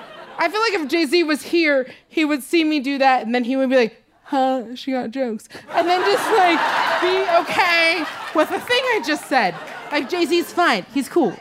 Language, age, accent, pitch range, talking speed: English, 30-49, American, 250-360 Hz, 210 wpm